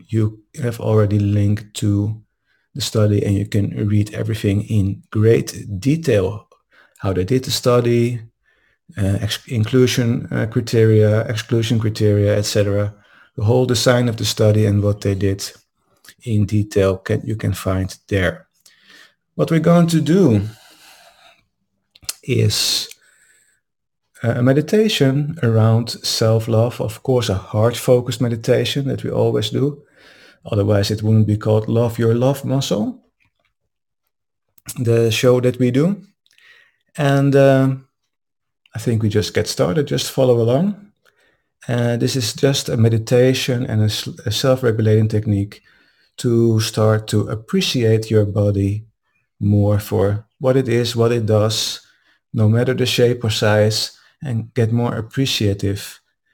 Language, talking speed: English, 130 wpm